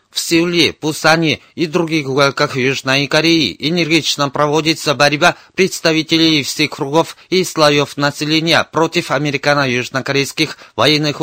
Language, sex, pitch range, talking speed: Russian, male, 135-160 Hz, 105 wpm